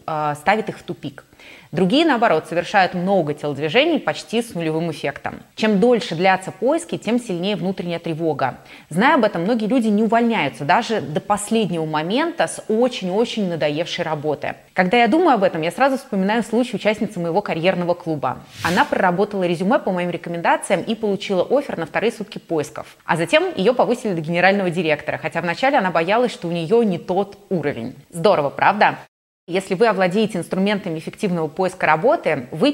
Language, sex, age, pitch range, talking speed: Russian, female, 20-39, 165-215 Hz, 165 wpm